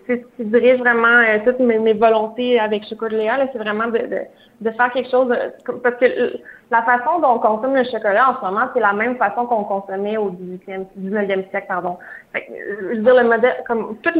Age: 20-39